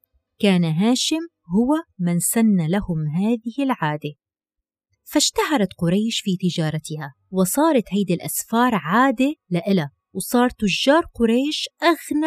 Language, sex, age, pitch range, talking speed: Arabic, female, 30-49, 170-255 Hz, 105 wpm